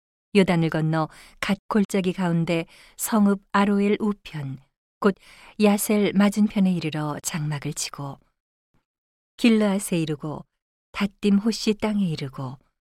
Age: 40-59